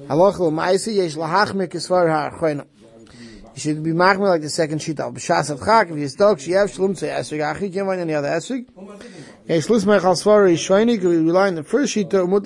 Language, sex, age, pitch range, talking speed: English, male, 30-49, 160-205 Hz, 55 wpm